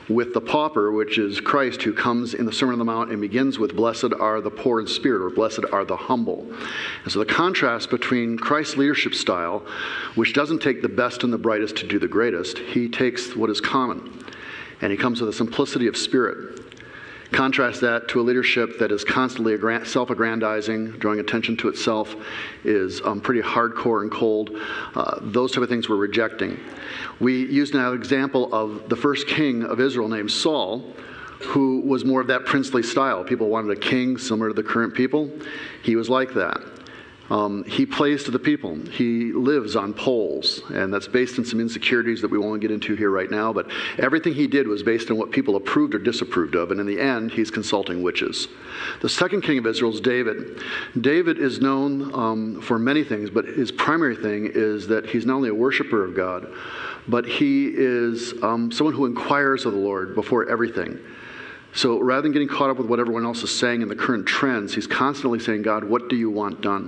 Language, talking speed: English, 205 wpm